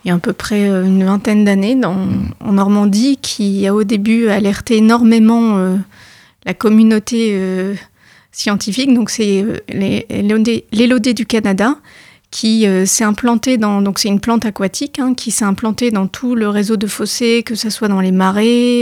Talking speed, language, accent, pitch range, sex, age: 180 wpm, French, French, 205-250 Hz, female, 30-49